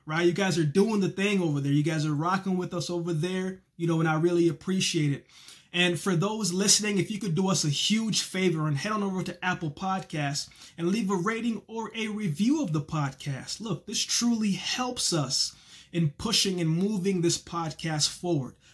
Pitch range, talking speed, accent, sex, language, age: 155-195 Hz, 210 wpm, American, male, English, 20-39